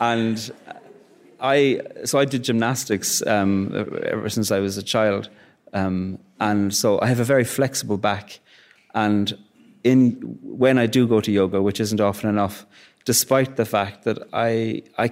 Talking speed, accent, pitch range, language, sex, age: 160 wpm, Irish, 105-120 Hz, English, male, 30-49